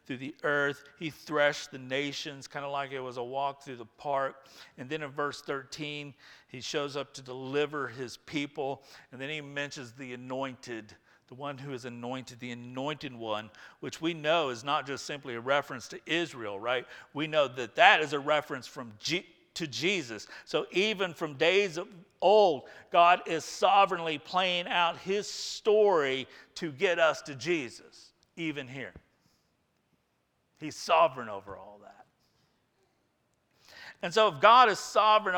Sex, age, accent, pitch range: male, 50-69, American, 135-175 Hz